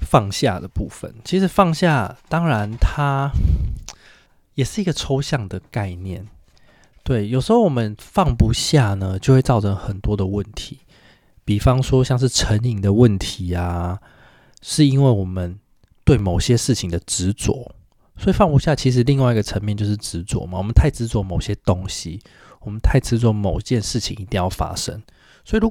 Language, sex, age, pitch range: Chinese, male, 20-39, 100-135 Hz